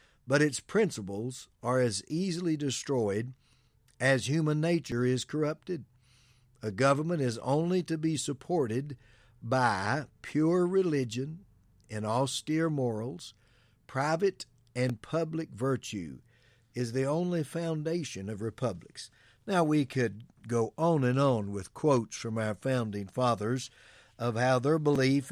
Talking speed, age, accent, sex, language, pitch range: 125 wpm, 60-79, American, male, English, 115-145 Hz